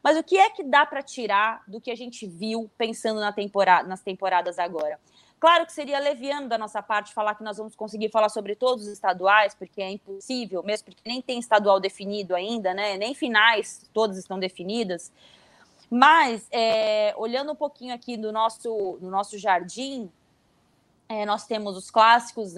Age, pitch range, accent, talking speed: 20-39, 200-250 Hz, Brazilian, 180 wpm